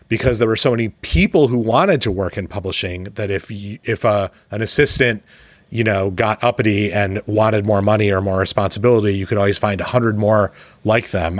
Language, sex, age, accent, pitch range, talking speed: English, male, 30-49, American, 95-115 Hz, 200 wpm